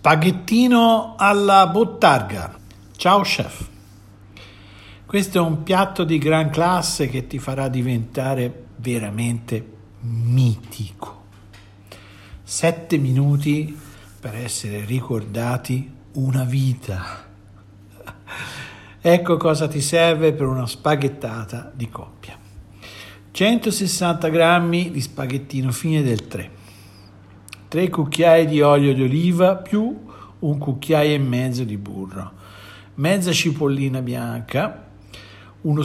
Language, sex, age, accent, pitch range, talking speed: Italian, male, 60-79, native, 100-160 Hz, 95 wpm